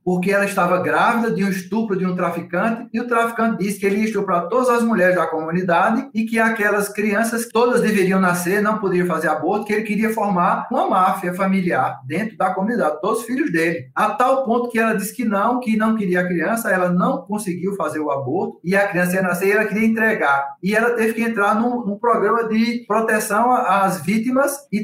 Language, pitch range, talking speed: Portuguese, 180-225 Hz, 215 wpm